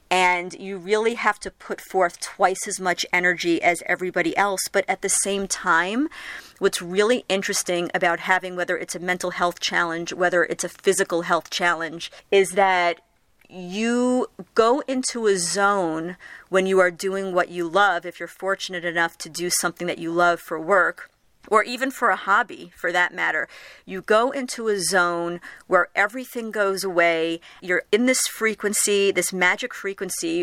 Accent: American